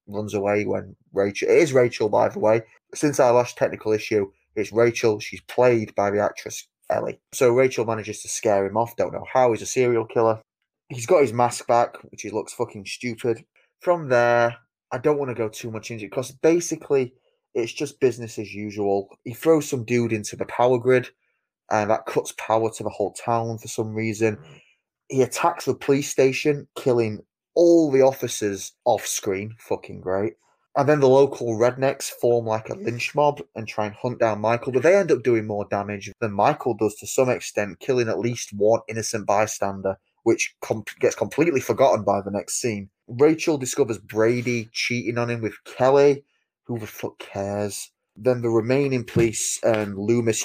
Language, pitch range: English, 105-130 Hz